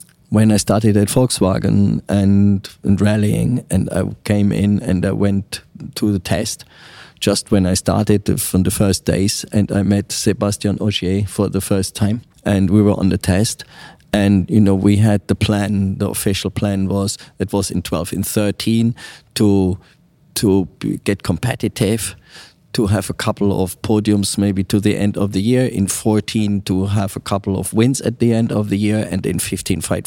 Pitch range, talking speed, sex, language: 100-115 Hz, 185 wpm, male, English